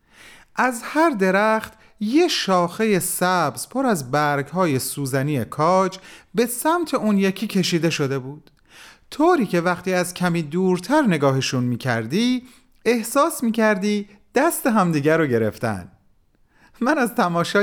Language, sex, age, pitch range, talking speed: Persian, male, 30-49, 130-215 Hz, 120 wpm